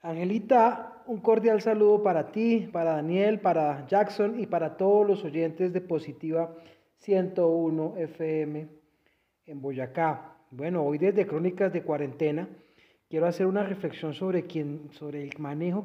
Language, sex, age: Spanish, male, 30-49